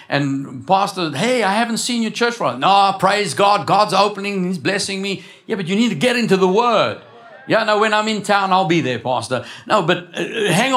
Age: 60-79